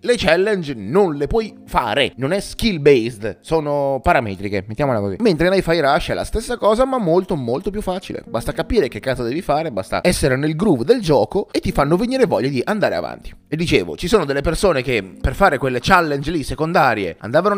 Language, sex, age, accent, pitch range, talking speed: Italian, male, 30-49, native, 135-205 Hz, 210 wpm